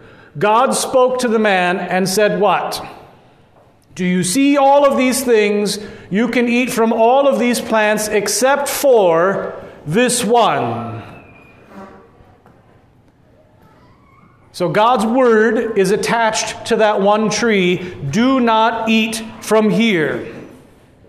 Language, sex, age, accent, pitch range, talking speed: English, male, 40-59, American, 175-240 Hz, 115 wpm